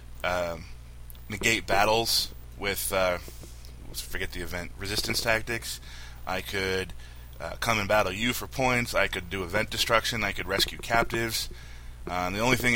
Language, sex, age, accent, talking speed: English, male, 20-39, American, 160 wpm